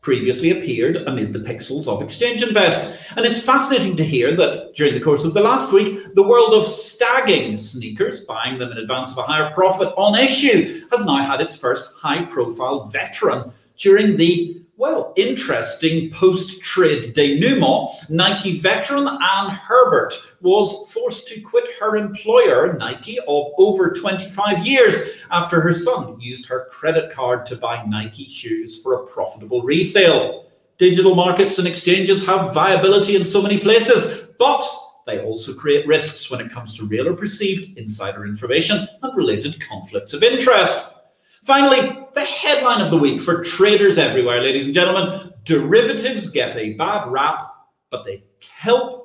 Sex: male